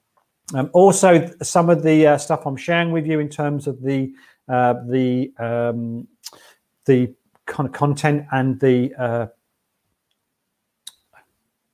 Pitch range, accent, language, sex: 130-155 Hz, British, English, male